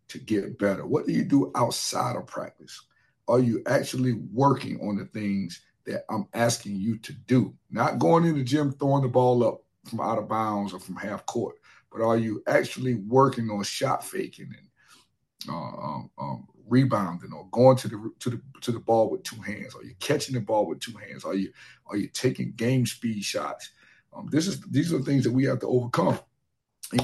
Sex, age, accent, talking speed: male, 50-69, American, 205 wpm